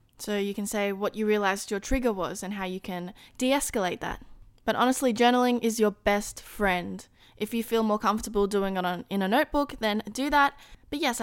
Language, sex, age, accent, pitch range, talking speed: English, female, 10-29, Australian, 195-250 Hz, 210 wpm